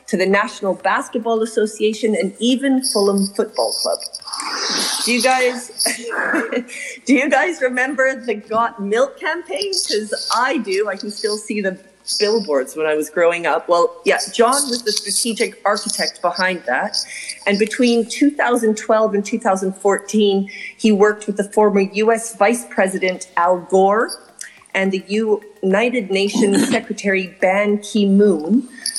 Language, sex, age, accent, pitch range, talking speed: English, female, 40-59, American, 175-230 Hz, 135 wpm